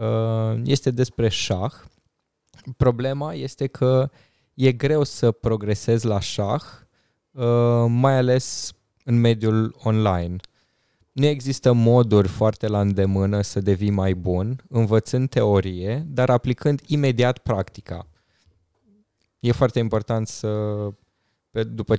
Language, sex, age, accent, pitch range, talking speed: Romanian, male, 20-39, native, 100-130 Hz, 105 wpm